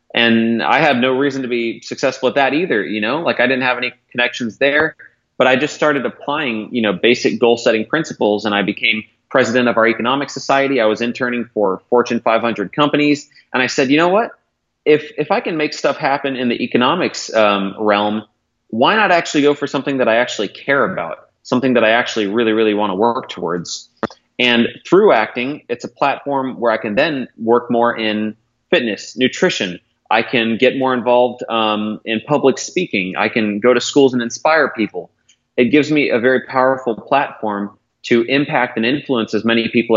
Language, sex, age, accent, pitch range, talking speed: English, male, 30-49, American, 110-135 Hz, 195 wpm